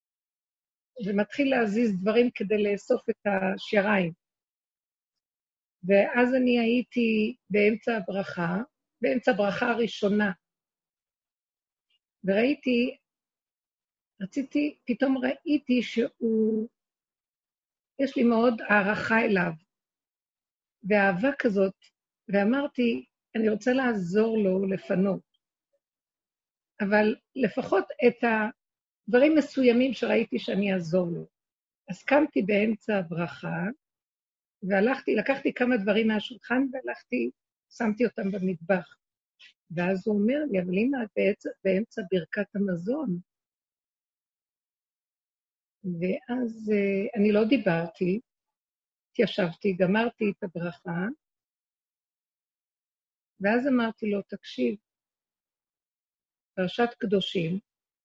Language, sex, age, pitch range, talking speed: Hebrew, female, 50-69, 195-245 Hz, 85 wpm